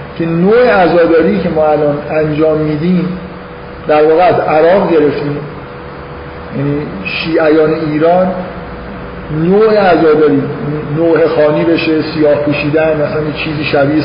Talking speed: 100 wpm